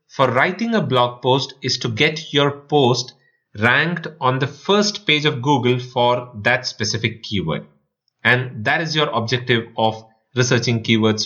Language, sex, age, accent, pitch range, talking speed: English, male, 30-49, Indian, 115-160 Hz, 155 wpm